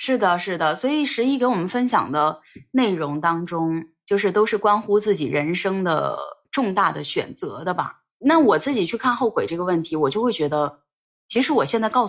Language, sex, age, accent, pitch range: Chinese, female, 20-39, native, 160-240 Hz